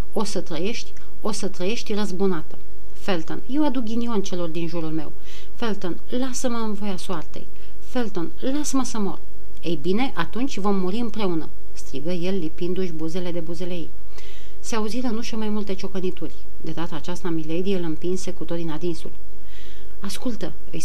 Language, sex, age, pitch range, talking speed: Romanian, female, 40-59, 175-215 Hz, 160 wpm